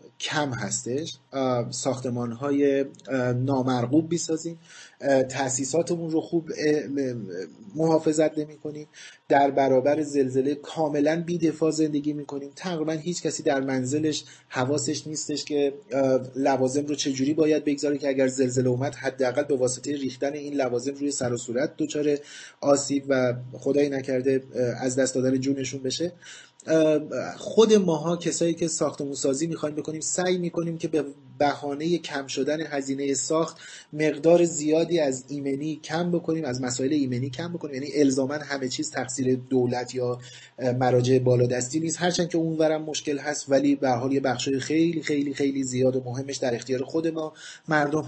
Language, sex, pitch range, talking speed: Persian, male, 130-155 Hz, 140 wpm